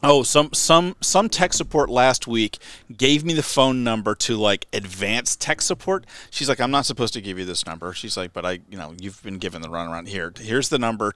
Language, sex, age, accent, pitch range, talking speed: English, male, 40-59, American, 105-145 Hz, 235 wpm